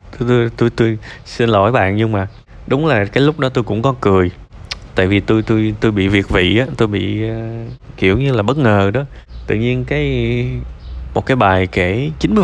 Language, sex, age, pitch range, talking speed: Vietnamese, male, 20-39, 100-125 Hz, 210 wpm